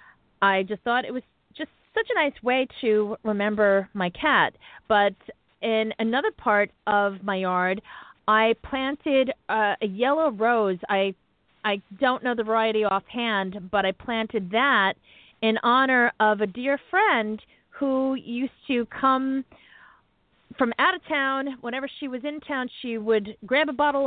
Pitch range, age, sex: 200-250 Hz, 40-59, female